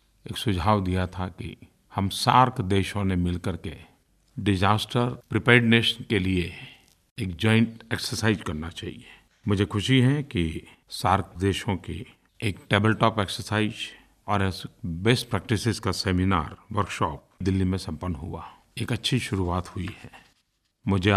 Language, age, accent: Hindi, 50-69, native